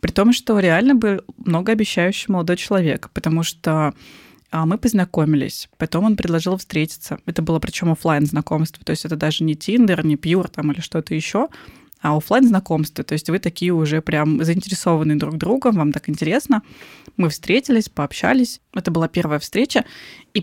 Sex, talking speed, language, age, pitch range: female, 160 wpm, Russian, 20-39, 160-205 Hz